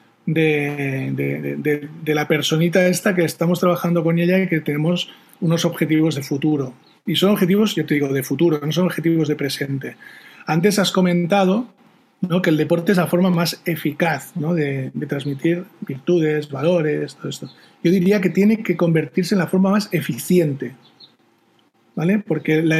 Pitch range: 150-185 Hz